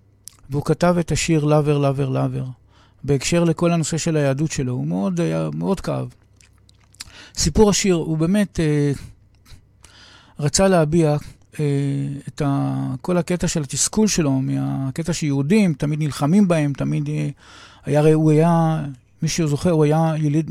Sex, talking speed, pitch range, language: male, 140 wpm, 135-165 Hz, Hebrew